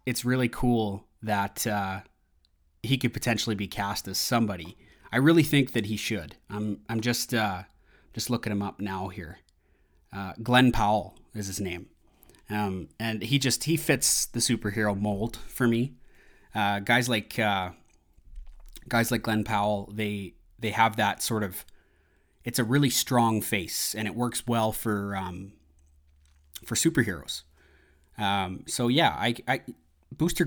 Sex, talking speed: male, 155 wpm